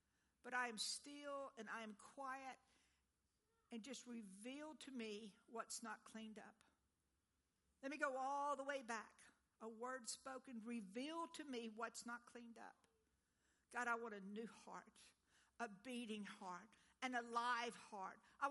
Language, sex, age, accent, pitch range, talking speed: English, female, 60-79, American, 220-285 Hz, 155 wpm